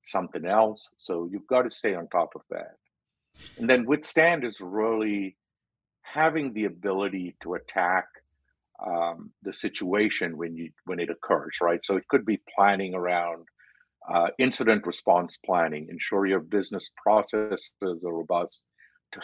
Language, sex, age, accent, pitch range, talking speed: English, male, 50-69, American, 90-120 Hz, 145 wpm